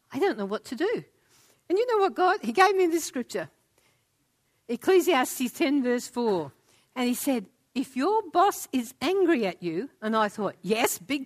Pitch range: 225-355 Hz